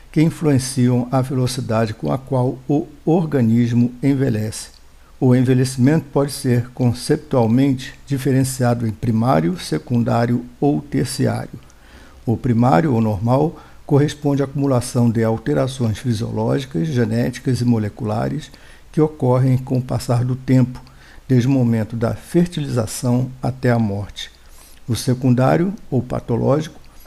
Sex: male